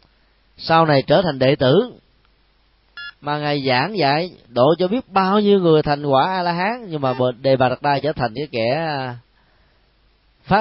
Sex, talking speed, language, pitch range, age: male, 170 wpm, Vietnamese, 125-175 Hz, 20-39